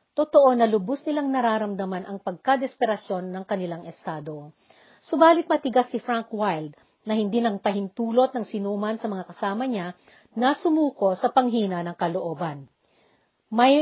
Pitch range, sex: 190-270 Hz, female